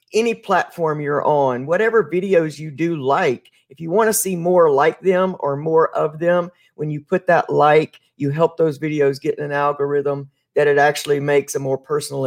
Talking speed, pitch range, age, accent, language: 200 wpm, 145-190 Hz, 50-69, American, English